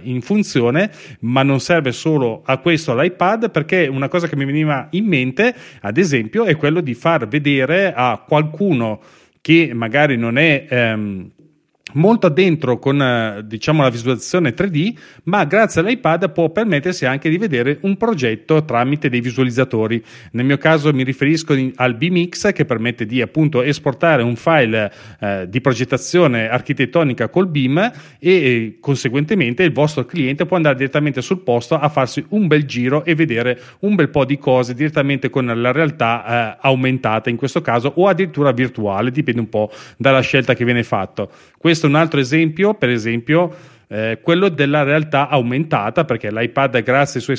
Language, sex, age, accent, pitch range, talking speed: Italian, male, 30-49, native, 125-160 Hz, 165 wpm